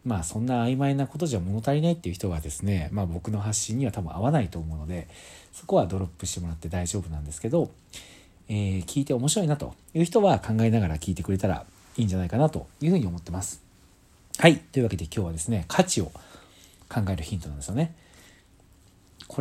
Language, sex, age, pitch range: Japanese, male, 40-59, 90-145 Hz